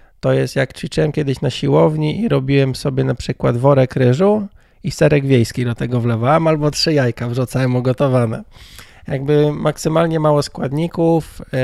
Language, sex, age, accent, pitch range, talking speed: Polish, male, 20-39, native, 120-145 Hz, 150 wpm